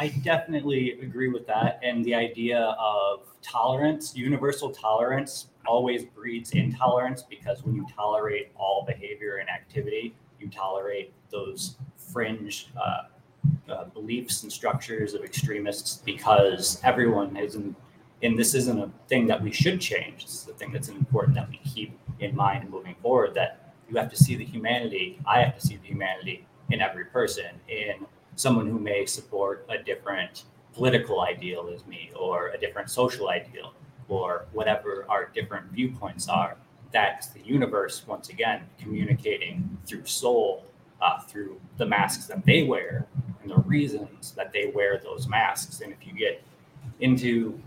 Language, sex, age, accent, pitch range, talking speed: English, male, 30-49, American, 115-150 Hz, 155 wpm